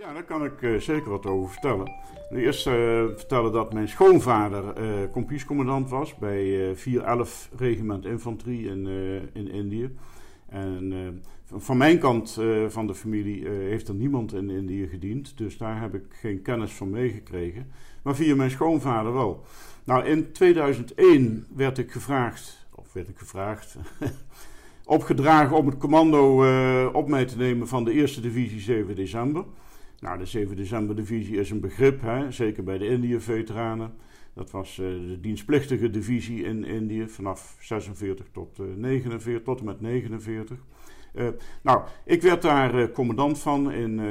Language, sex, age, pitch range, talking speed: Dutch, male, 50-69, 105-130 Hz, 160 wpm